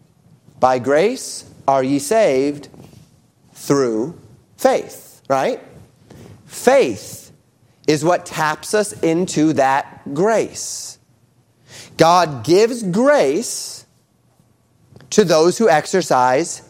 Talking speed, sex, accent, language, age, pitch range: 85 wpm, male, American, English, 30-49, 135-185 Hz